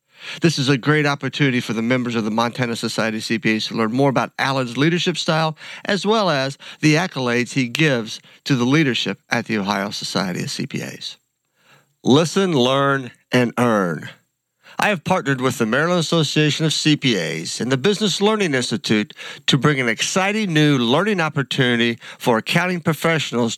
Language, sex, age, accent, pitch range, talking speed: English, male, 50-69, American, 130-175 Hz, 165 wpm